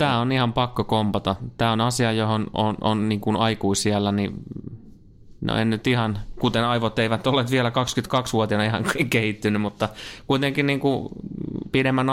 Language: Finnish